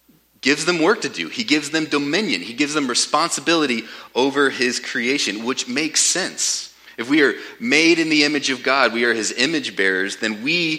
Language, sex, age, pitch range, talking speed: English, male, 30-49, 105-145 Hz, 195 wpm